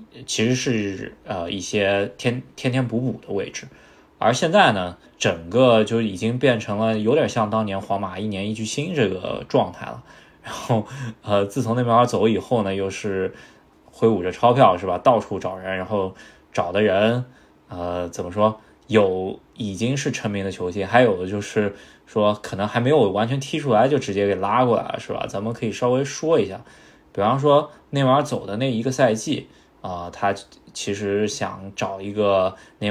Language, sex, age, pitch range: Chinese, male, 20-39, 95-120 Hz